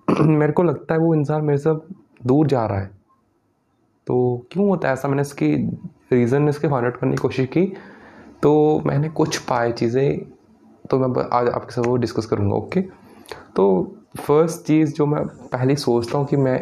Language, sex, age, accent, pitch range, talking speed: Hindi, male, 20-39, native, 115-150 Hz, 185 wpm